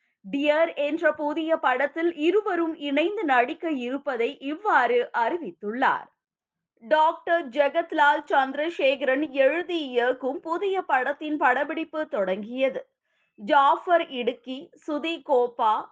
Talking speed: 85 wpm